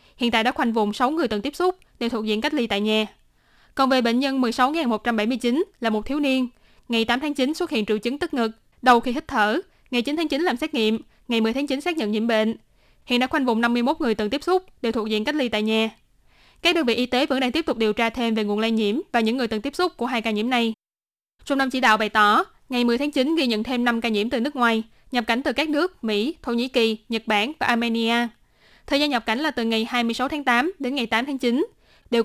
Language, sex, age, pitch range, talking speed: Vietnamese, female, 10-29, 225-280 Hz, 270 wpm